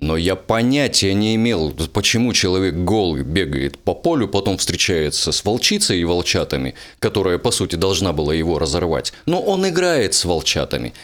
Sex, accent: male, native